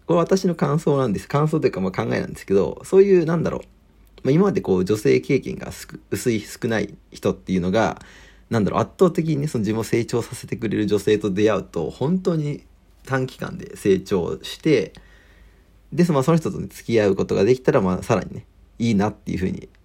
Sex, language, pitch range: male, Japanese, 95-155 Hz